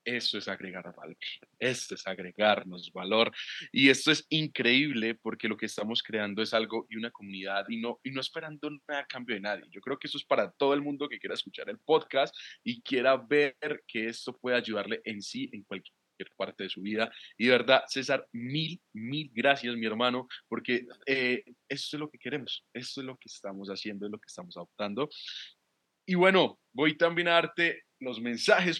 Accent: Colombian